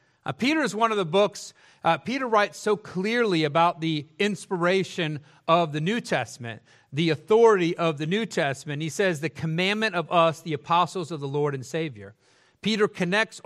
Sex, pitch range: male, 145-195 Hz